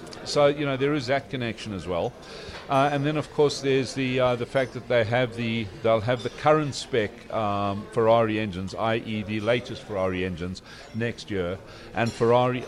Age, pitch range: 60-79, 110-130 Hz